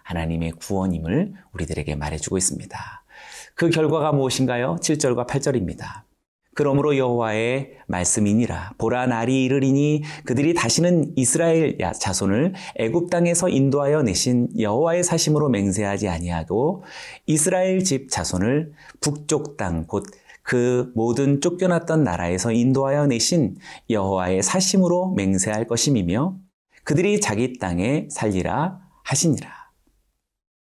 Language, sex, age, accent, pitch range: Korean, male, 30-49, native, 105-160 Hz